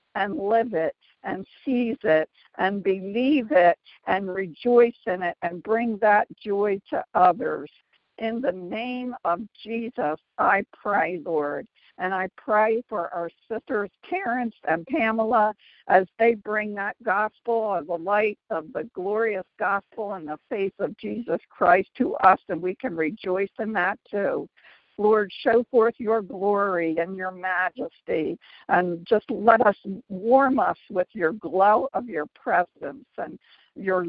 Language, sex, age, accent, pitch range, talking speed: English, female, 60-79, American, 180-230 Hz, 150 wpm